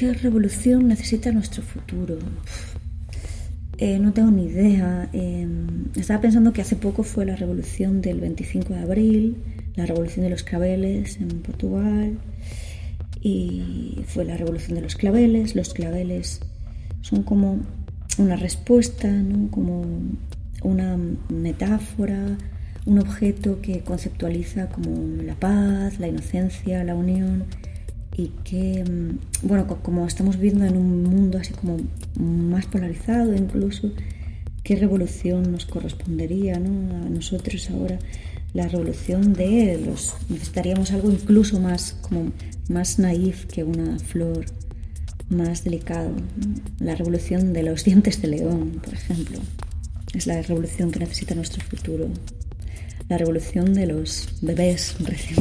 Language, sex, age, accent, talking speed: Spanish, female, 30-49, Spanish, 125 wpm